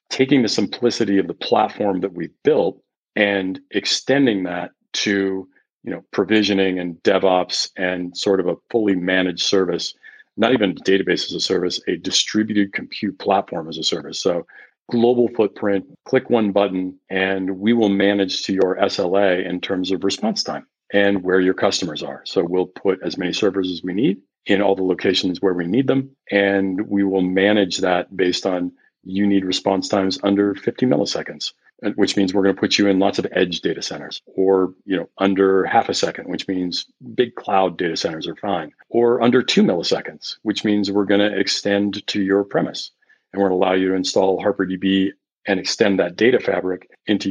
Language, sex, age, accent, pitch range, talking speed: English, male, 40-59, American, 95-100 Hz, 190 wpm